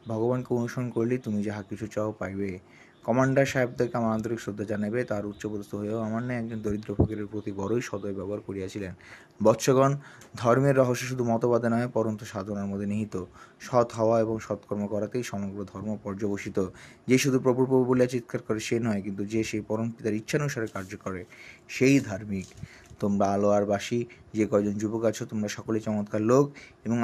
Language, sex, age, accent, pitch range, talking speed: Bengali, male, 30-49, native, 100-120 Hz, 85 wpm